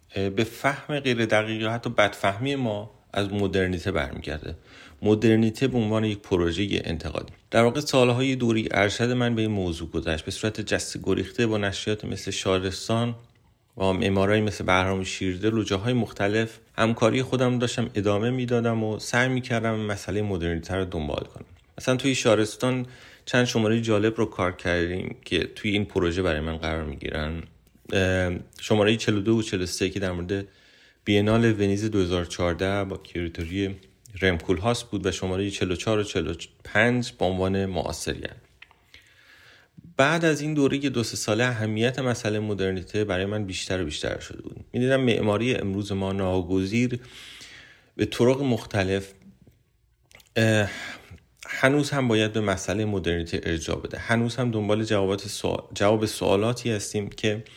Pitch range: 95-115 Hz